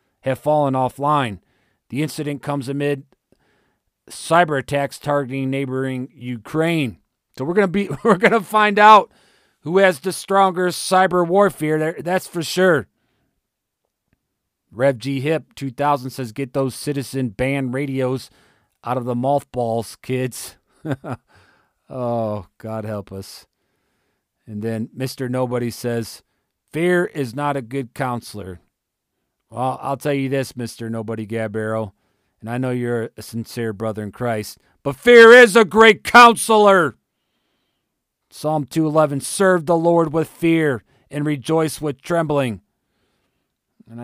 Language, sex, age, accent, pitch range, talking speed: English, male, 40-59, American, 120-155 Hz, 130 wpm